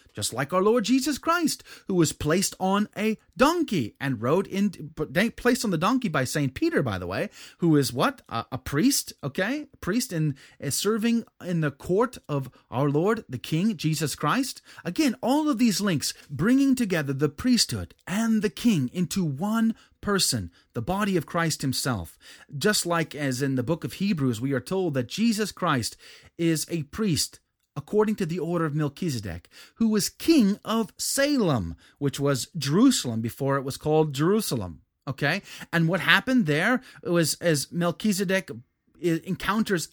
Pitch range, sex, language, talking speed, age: 140-215 Hz, male, English, 165 wpm, 30-49